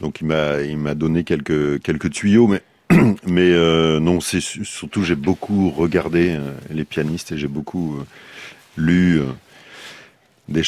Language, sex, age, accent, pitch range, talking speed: French, male, 40-59, French, 75-90 Hz, 155 wpm